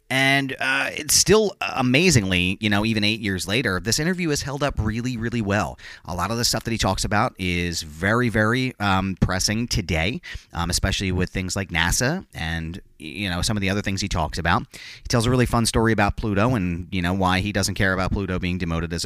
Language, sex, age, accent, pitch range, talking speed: English, male, 30-49, American, 90-120 Hz, 225 wpm